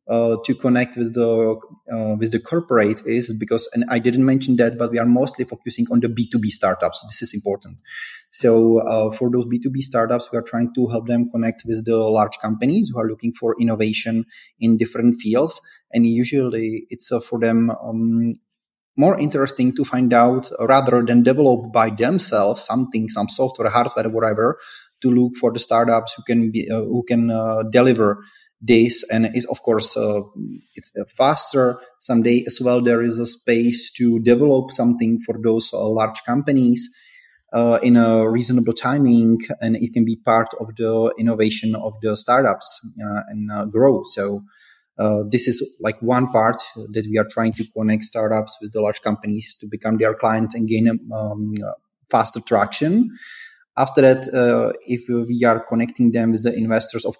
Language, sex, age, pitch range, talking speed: English, male, 30-49, 110-125 Hz, 185 wpm